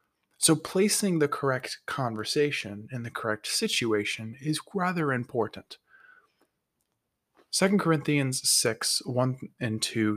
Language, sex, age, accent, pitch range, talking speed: English, male, 20-39, American, 110-140 Hz, 105 wpm